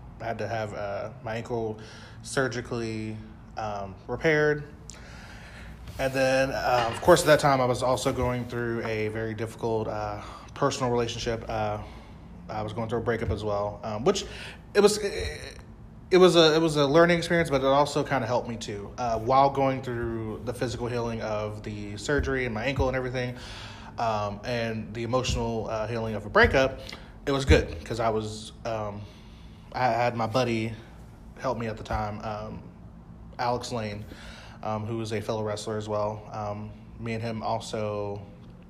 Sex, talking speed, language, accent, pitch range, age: male, 175 wpm, English, American, 105-125 Hz, 20-39